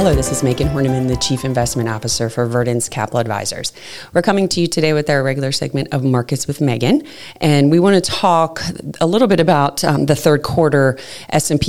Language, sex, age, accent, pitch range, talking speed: English, female, 30-49, American, 130-160 Hz, 205 wpm